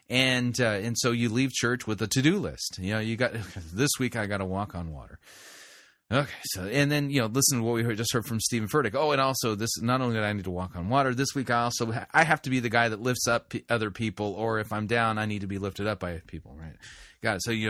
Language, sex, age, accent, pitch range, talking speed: English, male, 30-49, American, 100-135 Hz, 290 wpm